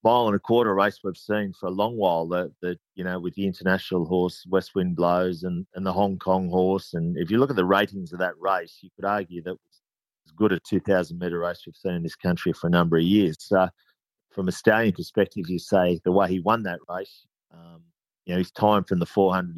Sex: male